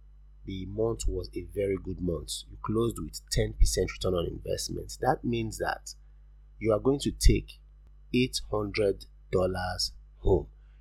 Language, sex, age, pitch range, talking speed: English, male, 30-49, 75-110 Hz, 150 wpm